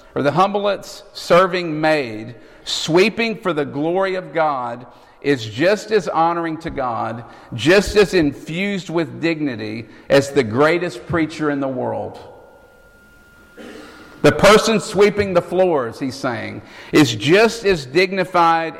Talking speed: 130 wpm